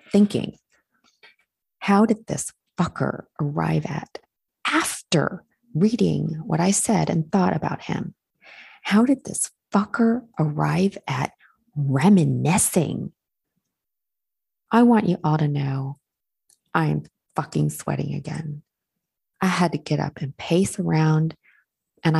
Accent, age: American, 40-59